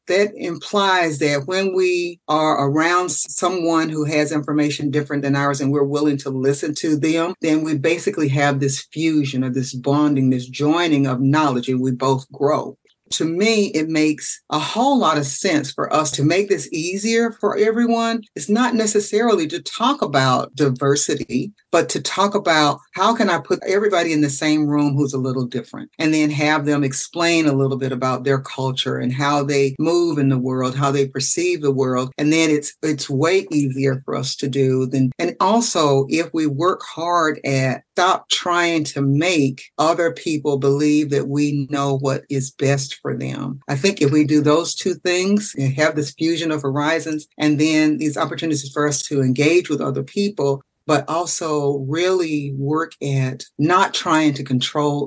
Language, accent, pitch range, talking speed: English, American, 135-165 Hz, 185 wpm